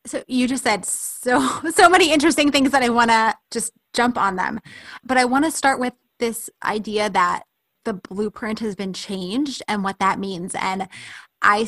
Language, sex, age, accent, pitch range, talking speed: English, female, 20-39, American, 200-240 Hz, 190 wpm